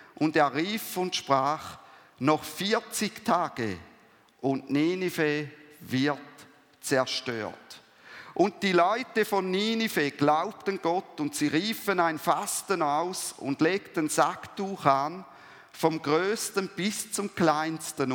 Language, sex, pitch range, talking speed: German, male, 155-195 Hz, 110 wpm